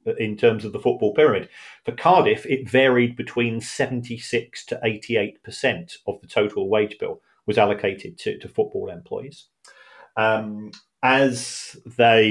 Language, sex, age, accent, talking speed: English, male, 40-59, British, 135 wpm